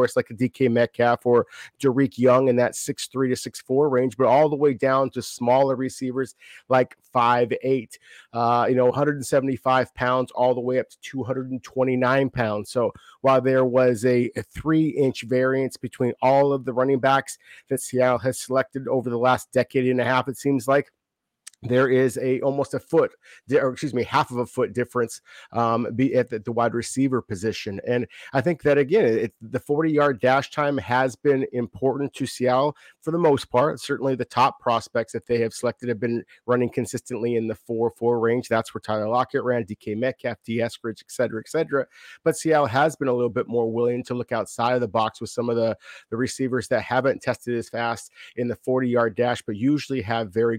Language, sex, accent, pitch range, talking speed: English, male, American, 120-135 Hz, 205 wpm